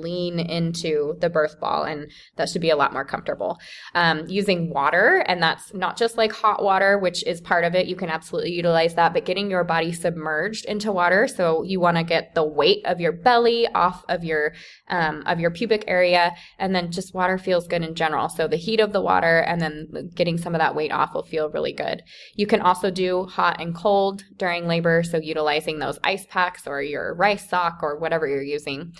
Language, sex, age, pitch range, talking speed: English, female, 20-39, 165-195 Hz, 220 wpm